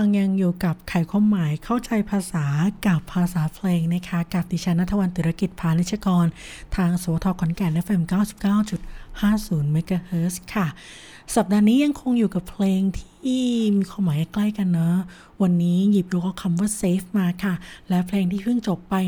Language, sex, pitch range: Thai, female, 185-225 Hz